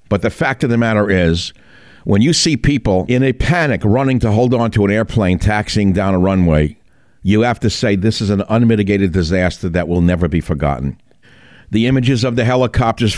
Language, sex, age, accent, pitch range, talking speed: English, male, 60-79, American, 95-120 Hz, 200 wpm